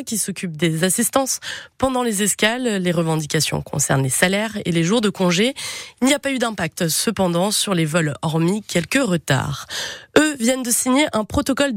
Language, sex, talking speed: French, female, 185 wpm